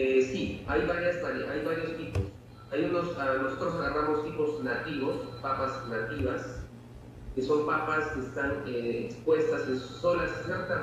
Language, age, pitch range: Italian, 40-59, 130-155 Hz